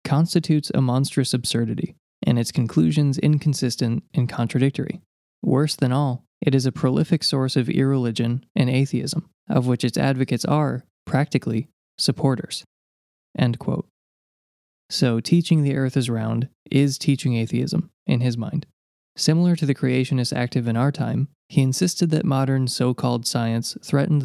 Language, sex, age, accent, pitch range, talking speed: English, male, 20-39, American, 120-145 Hz, 145 wpm